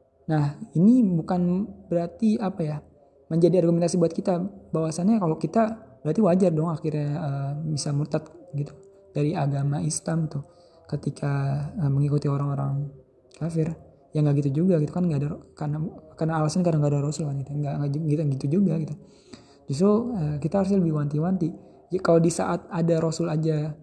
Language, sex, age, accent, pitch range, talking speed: Indonesian, male, 20-39, native, 145-175 Hz, 170 wpm